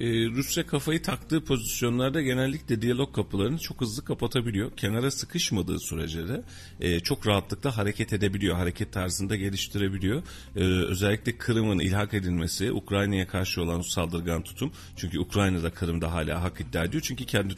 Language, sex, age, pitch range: Turkish, male, 40-59, 90-120 Hz